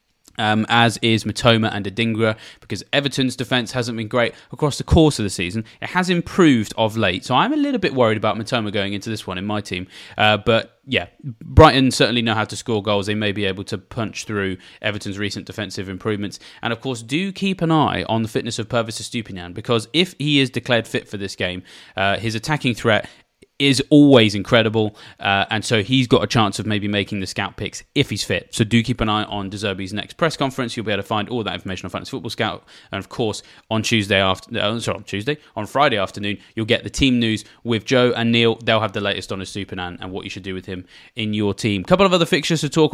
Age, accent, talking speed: 20-39, British, 240 wpm